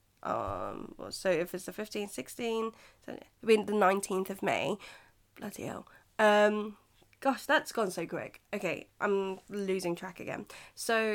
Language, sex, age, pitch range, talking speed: English, female, 10-29, 185-215 Hz, 145 wpm